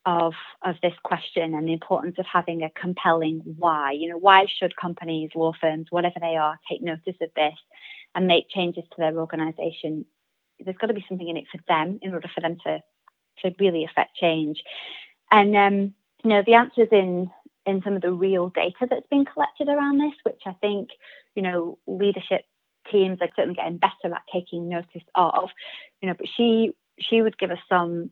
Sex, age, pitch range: female, 30-49, 170-195 Hz